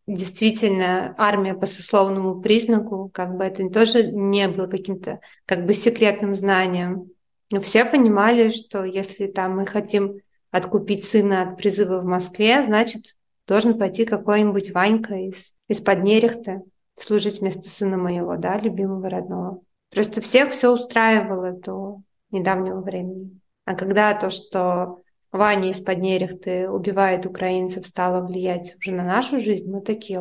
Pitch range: 190-215 Hz